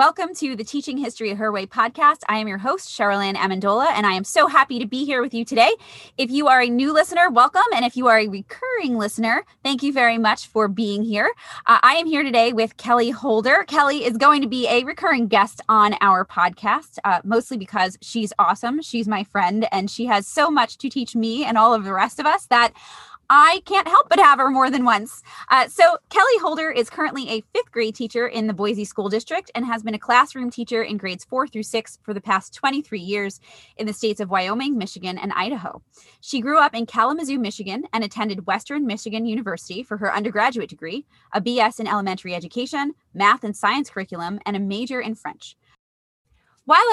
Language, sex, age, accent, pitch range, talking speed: English, female, 20-39, American, 210-265 Hz, 215 wpm